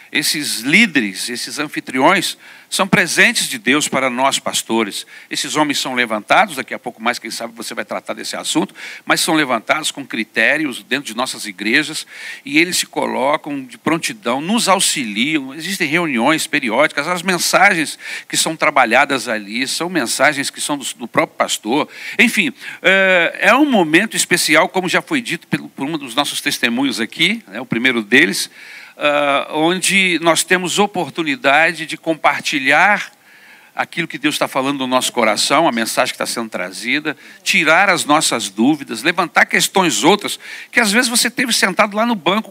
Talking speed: 160 wpm